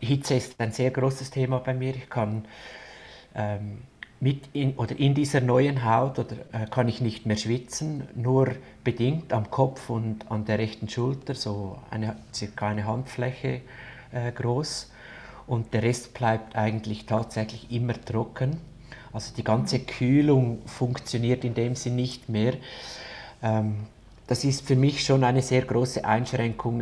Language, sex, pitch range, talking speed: German, male, 110-130 Hz, 155 wpm